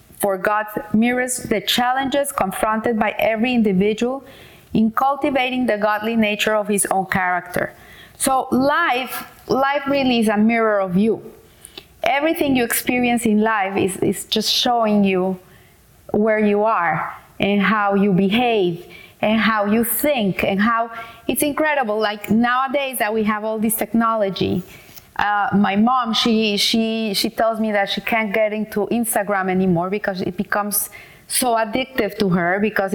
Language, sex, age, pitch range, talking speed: English, female, 30-49, 205-250 Hz, 150 wpm